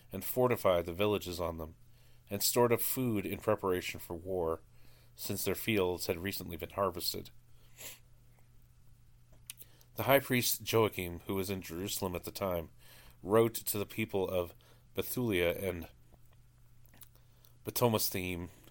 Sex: male